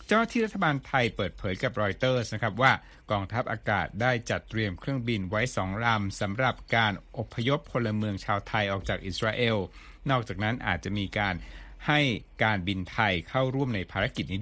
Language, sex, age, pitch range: Thai, male, 60-79, 100-130 Hz